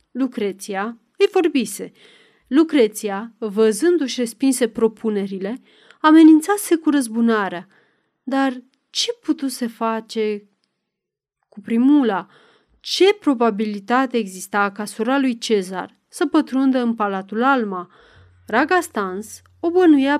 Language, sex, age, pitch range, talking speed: Romanian, female, 30-49, 215-280 Hz, 95 wpm